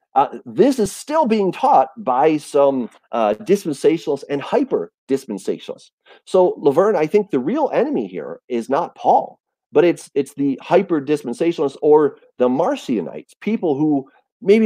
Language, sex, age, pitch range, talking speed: English, male, 40-59, 135-215 Hz, 140 wpm